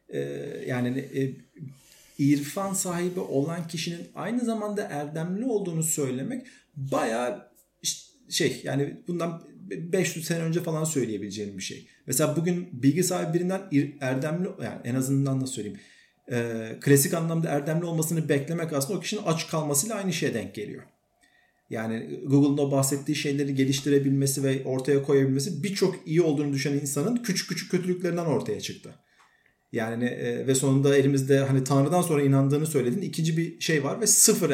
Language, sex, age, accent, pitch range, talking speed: Turkish, male, 40-59, native, 130-175 Hz, 135 wpm